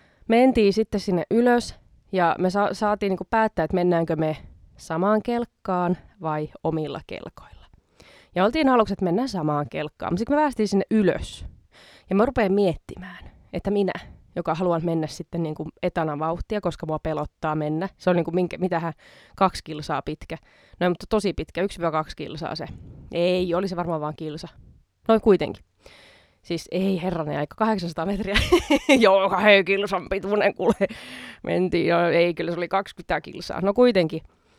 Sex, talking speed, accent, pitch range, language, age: female, 155 wpm, native, 165-210 Hz, Finnish, 20-39